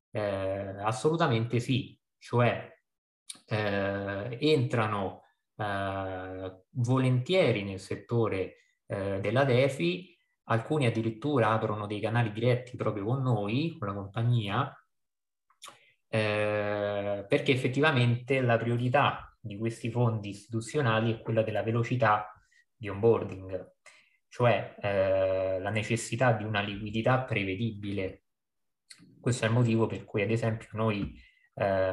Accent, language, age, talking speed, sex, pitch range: native, Italian, 20-39, 110 wpm, male, 100-125 Hz